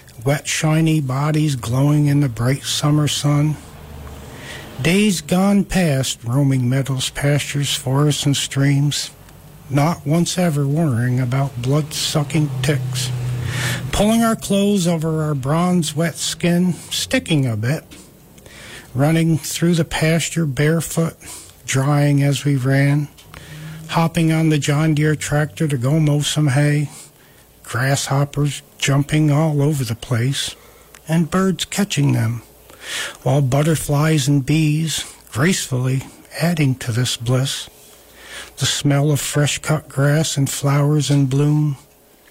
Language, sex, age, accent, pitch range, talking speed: English, male, 60-79, American, 130-155 Hz, 120 wpm